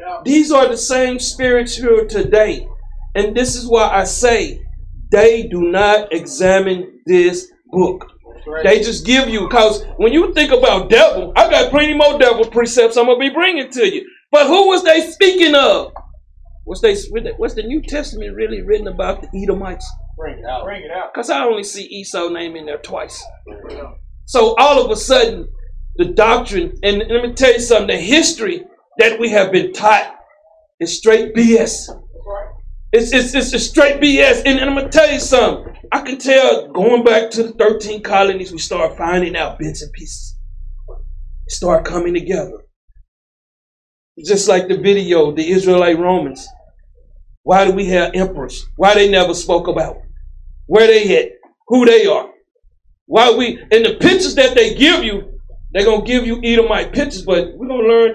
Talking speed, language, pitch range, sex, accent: 175 wpm, English, 190-295 Hz, male, American